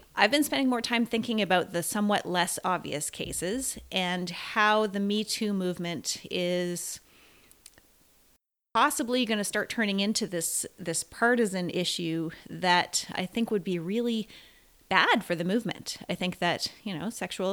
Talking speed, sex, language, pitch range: 155 wpm, female, English, 175-220 Hz